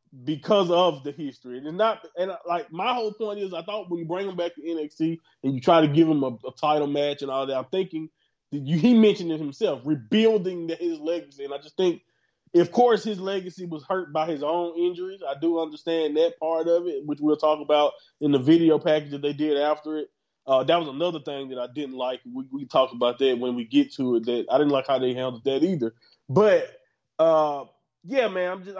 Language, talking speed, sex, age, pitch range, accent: English, 240 wpm, male, 20-39, 155-215 Hz, American